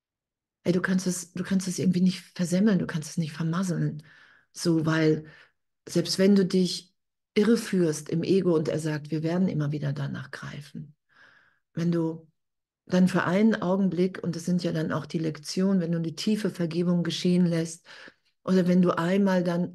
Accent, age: German, 50-69